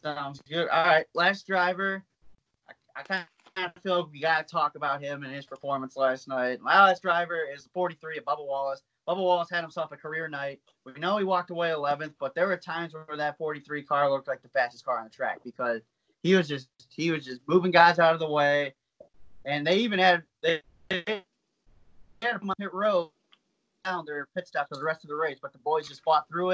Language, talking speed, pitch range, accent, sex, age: English, 220 wpm, 145-185 Hz, American, male, 20-39